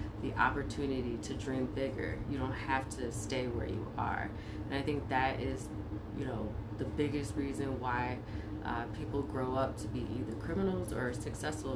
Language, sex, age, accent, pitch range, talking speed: English, female, 30-49, American, 105-135 Hz, 175 wpm